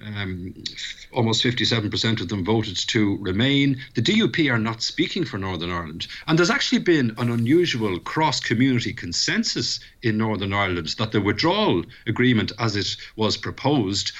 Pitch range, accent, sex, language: 105-135 Hz, Irish, male, English